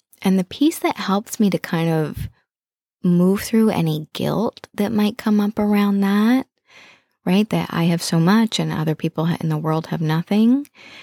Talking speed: 180 wpm